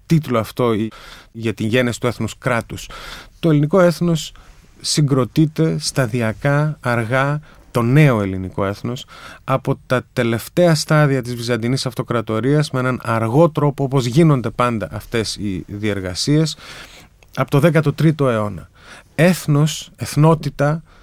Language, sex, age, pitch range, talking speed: Greek, male, 30-49, 115-160 Hz, 115 wpm